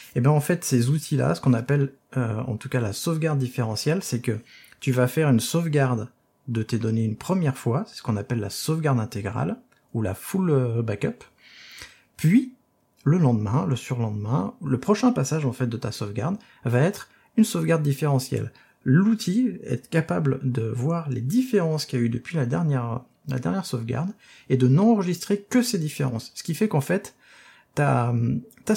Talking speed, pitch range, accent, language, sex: 185 wpm, 120-155 Hz, French, French, male